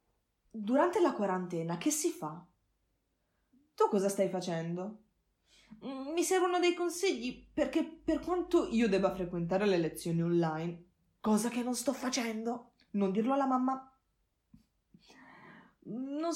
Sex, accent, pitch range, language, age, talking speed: female, native, 175-260 Hz, Italian, 20-39, 120 wpm